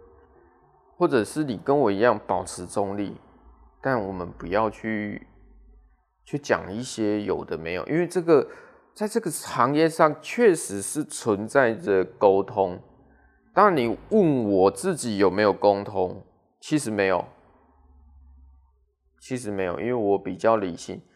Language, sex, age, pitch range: Chinese, male, 20-39, 100-160 Hz